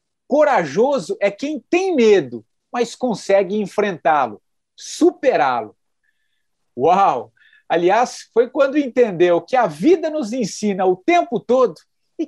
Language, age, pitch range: English, 50-69, 195-285 Hz